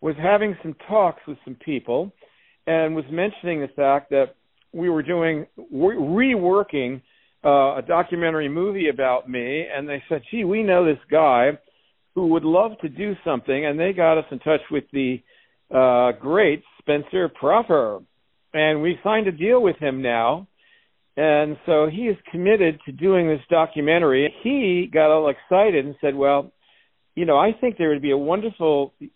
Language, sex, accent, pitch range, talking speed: English, male, American, 140-175 Hz, 170 wpm